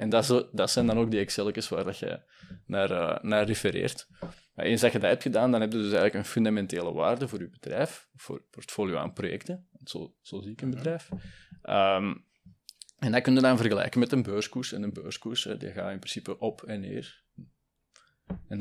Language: Dutch